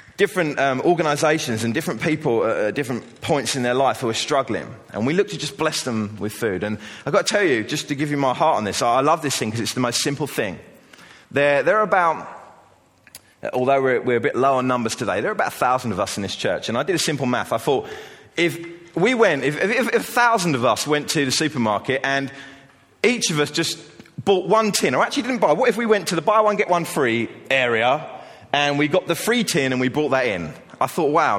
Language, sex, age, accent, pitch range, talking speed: English, male, 30-49, British, 130-200 Hz, 250 wpm